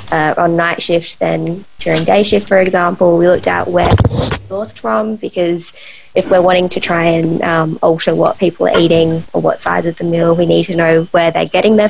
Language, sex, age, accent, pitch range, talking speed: English, female, 20-39, Australian, 170-195 Hz, 215 wpm